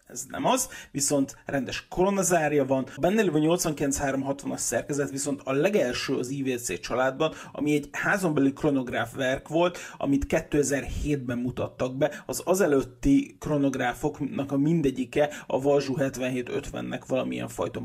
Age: 30-49